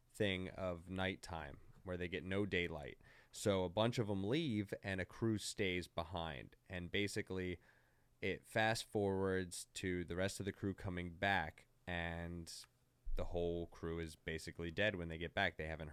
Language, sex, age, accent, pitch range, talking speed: English, male, 20-39, American, 85-100 Hz, 165 wpm